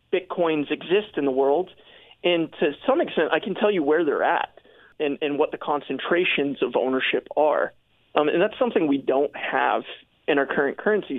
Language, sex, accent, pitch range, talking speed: English, male, American, 145-210 Hz, 190 wpm